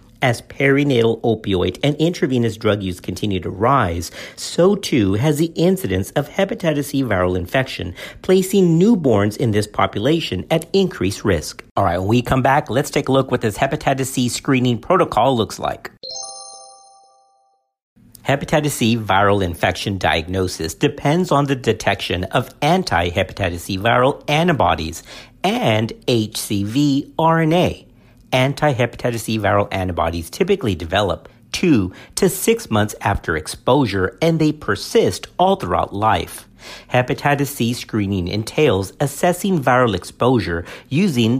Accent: American